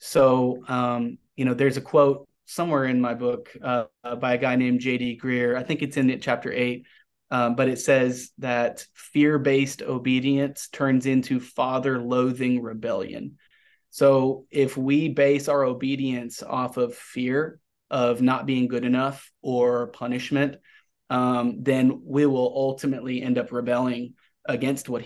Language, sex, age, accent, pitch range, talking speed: English, male, 30-49, American, 125-135 Hz, 150 wpm